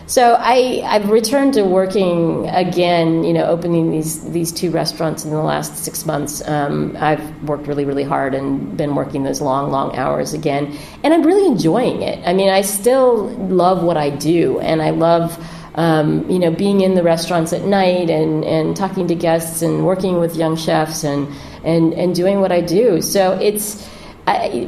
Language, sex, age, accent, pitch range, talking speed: English, female, 40-59, American, 150-180 Hz, 190 wpm